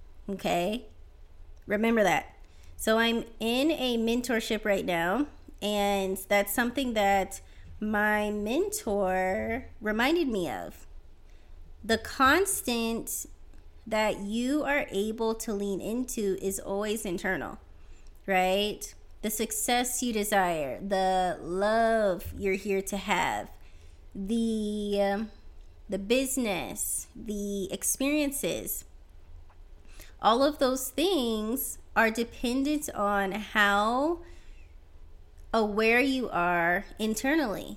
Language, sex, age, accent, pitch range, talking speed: English, female, 20-39, American, 180-235 Hz, 95 wpm